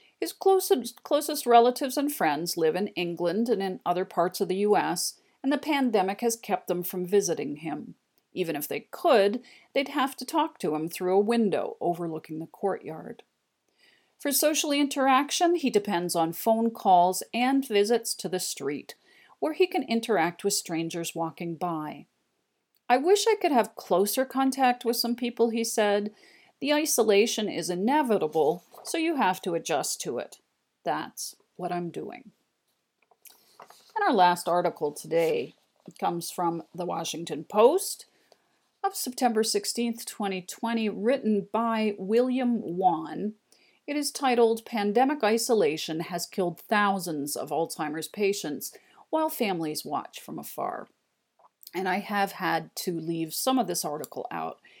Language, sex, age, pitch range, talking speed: English, female, 40-59, 180-255 Hz, 145 wpm